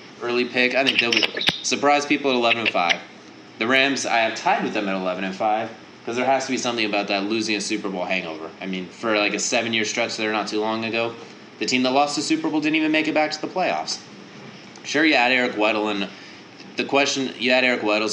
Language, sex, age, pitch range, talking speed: English, male, 20-39, 105-130 Hz, 230 wpm